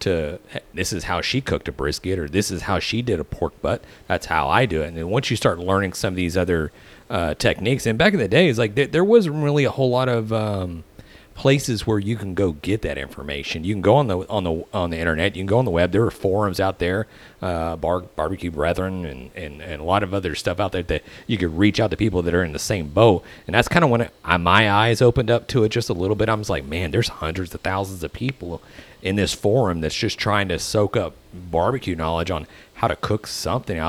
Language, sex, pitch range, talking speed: English, male, 85-120 Hz, 265 wpm